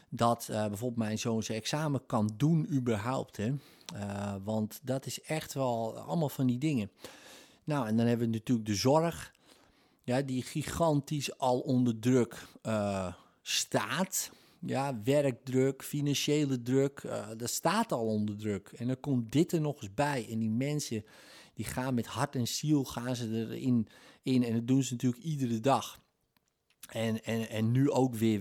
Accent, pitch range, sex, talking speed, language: Dutch, 110-130 Hz, male, 170 wpm, Dutch